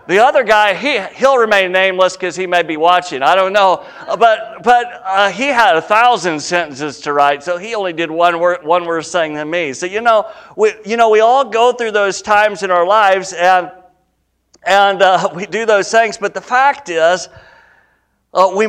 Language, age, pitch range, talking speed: English, 50-69, 165-205 Hz, 205 wpm